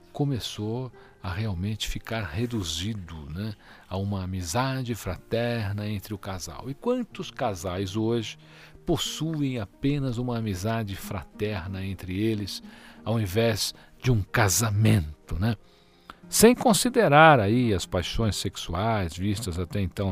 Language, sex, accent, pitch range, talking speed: Portuguese, male, Brazilian, 95-120 Hz, 115 wpm